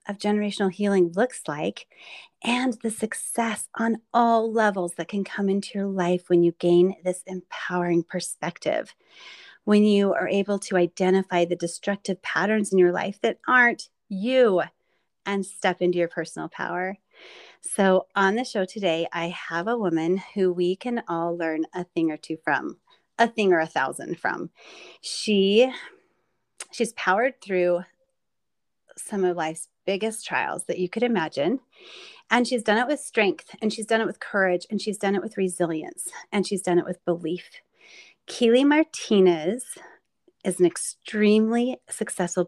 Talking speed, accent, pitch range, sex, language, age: 160 wpm, American, 175-220 Hz, female, English, 30-49